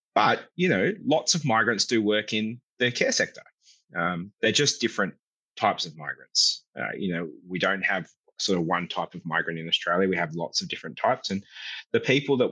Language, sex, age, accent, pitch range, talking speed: English, male, 30-49, Australian, 90-125 Hz, 205 wpm